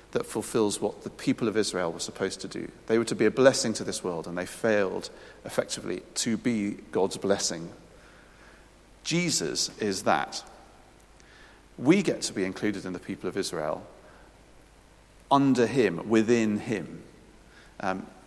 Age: 40-59